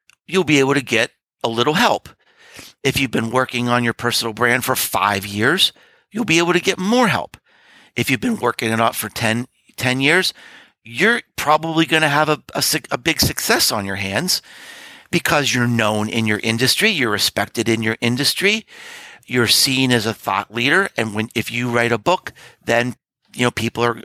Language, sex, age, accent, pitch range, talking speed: English, male, 50-69, American, 115-160 Hz, 195 wpm